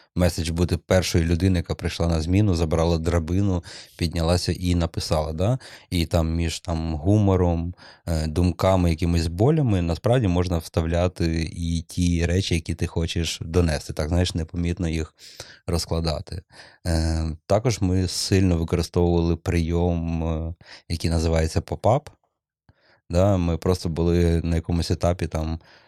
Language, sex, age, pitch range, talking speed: Ukrainian, male, 30-49, 80-90 Hz, 125 wpm